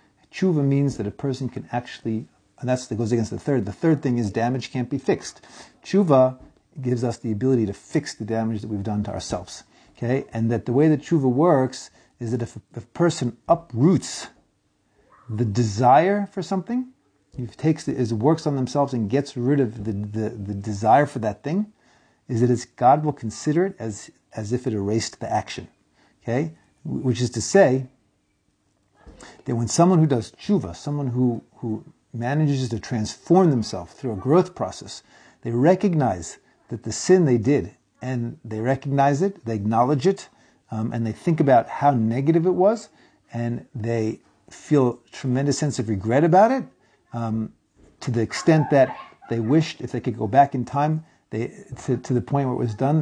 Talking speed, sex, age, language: 190 wpm, male, 40-59, English